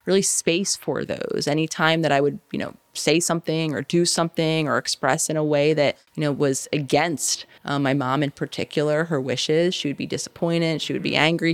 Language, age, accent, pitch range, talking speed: English, 30-49, American, 145-175 Hz, 210 wpm